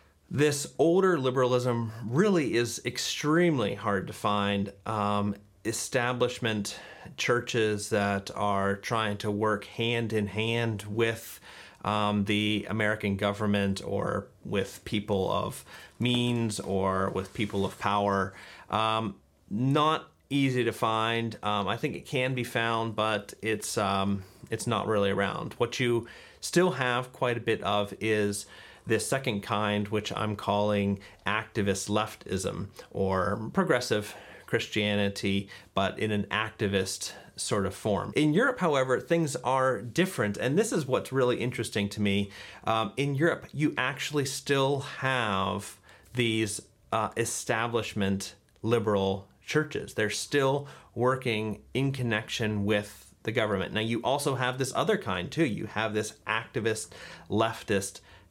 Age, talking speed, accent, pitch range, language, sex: 30-49, 130 wpm, American, 100-125 Hz, English, male